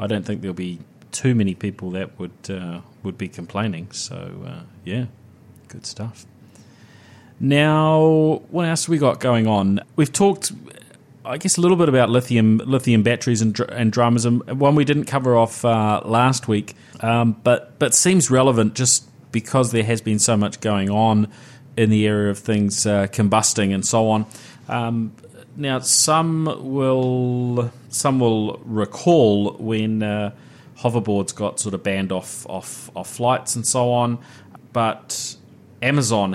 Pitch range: 100-125 Hz